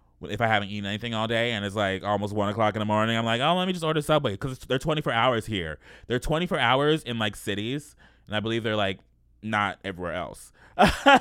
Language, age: English, 20-39